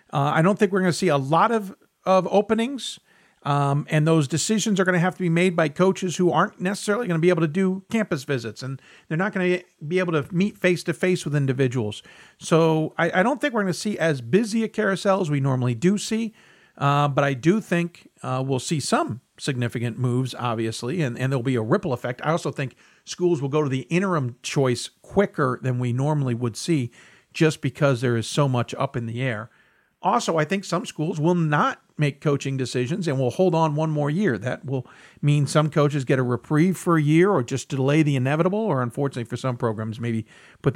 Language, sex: English, male